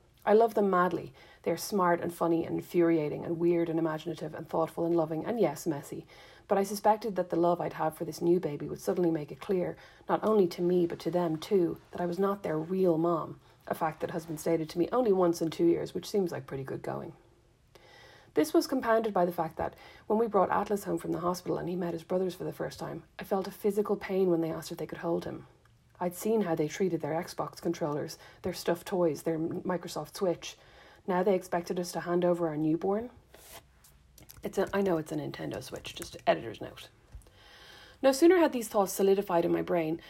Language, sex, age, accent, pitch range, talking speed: English, female, 40-59, Irish, 165-195 Hz, 230 wpm